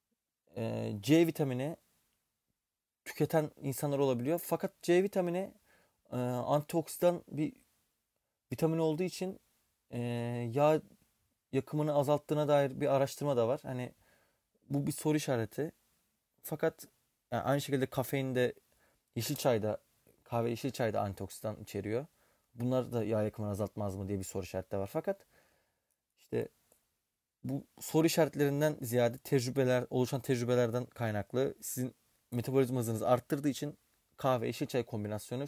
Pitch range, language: 115-145 Hz, Turkish